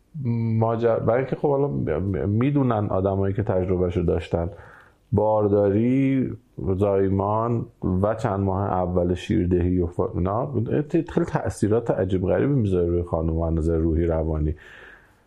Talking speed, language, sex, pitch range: 120 wpm, Persian, male, 100-140 Hz